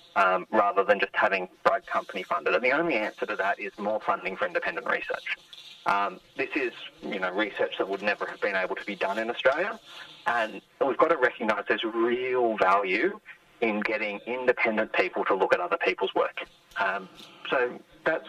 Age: 30-49